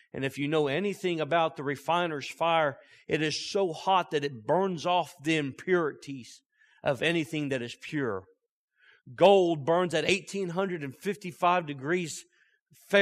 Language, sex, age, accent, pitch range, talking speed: English, male, 40-59, American, 145-190 Hz, 130 wpm